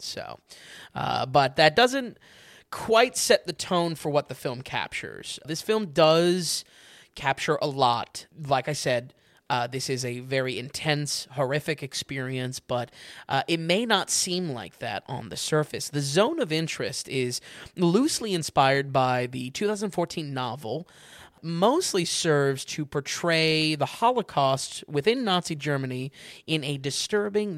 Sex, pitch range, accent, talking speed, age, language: male, 135-175 Hz, American, 140 wpm, 20-39, English